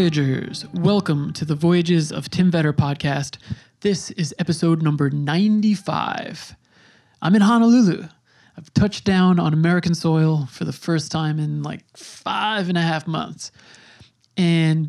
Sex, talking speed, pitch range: male, 140 wpm, 155-185 Hz